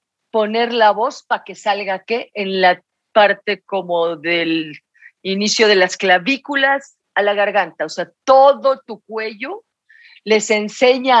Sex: female